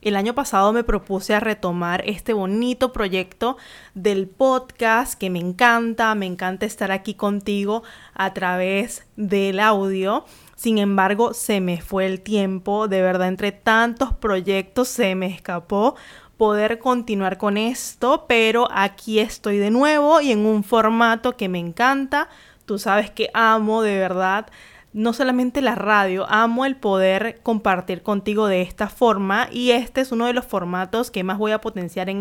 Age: 20-39